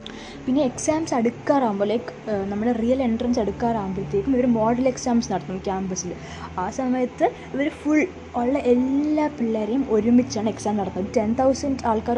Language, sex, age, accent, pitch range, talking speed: Malayalam, female, 20-39, native, 210-260 Hz, 130 wpm